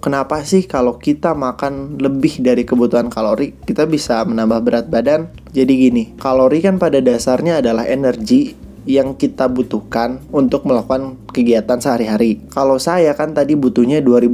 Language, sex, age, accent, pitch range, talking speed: Indonesian, male, 20-39, native, 115-145 Hz, 140 wpm